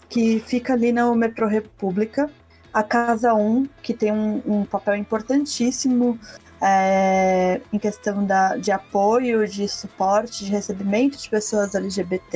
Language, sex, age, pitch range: Portuguese, female, 20-39, 200-235 Hz